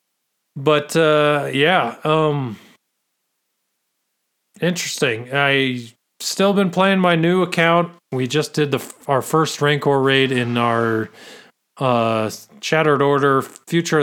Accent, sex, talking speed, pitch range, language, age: American, male, 110 wpm, 120-155 Hz, English, 40-59